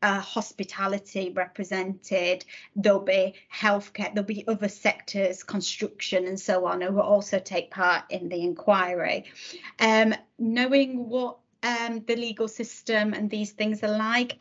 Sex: female